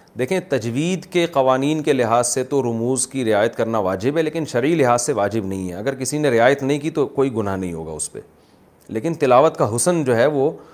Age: 40-59